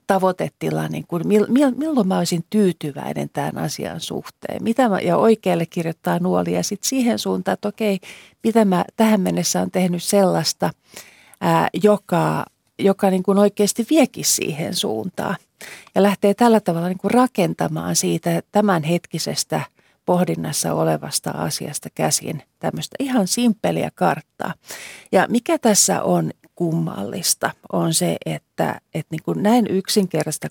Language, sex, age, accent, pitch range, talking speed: Finnish, female, 40-59, native, 165-220 Hz, 130 wpm